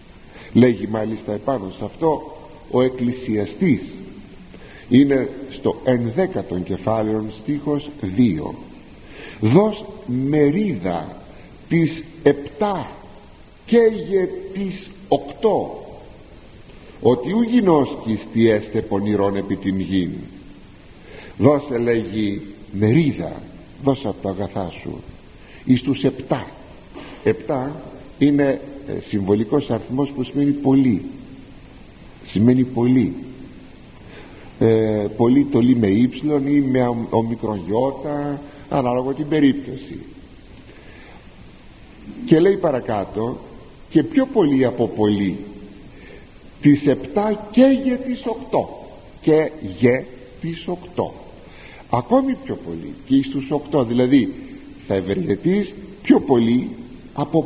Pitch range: 110-155 Hz